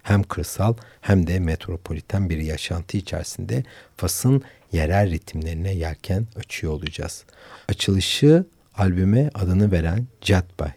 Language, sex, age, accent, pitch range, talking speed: Turkish, male, 60-79, native, 85-110 Hz, 105 wpm